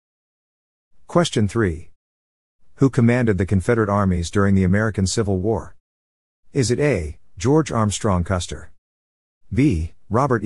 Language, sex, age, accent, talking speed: English, male, 50-69, American, 115 wpm